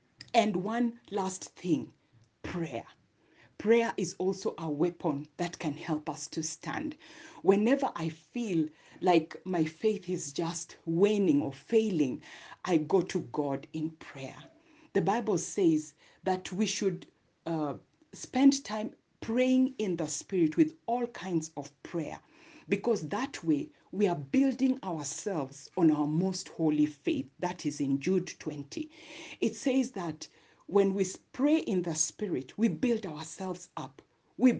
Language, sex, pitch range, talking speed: English, female, 160-240 Hz, 140 wpm